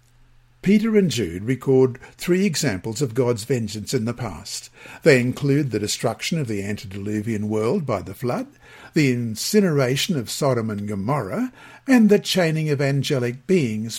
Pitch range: 120-170 Hz